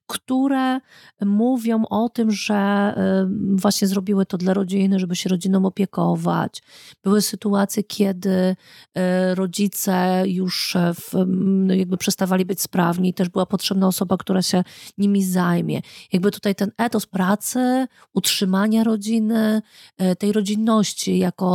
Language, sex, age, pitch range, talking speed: Polish, female, 40-59, 185-220 Hz, 120 wpm